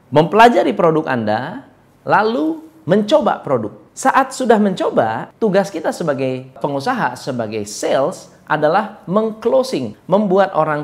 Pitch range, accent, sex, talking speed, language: 130-215 Hz, native, male, 105 wpm, Indonesian